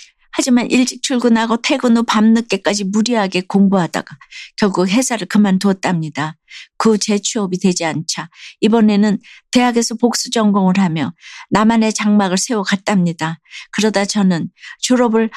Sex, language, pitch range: female, Korean, 190-235 Hz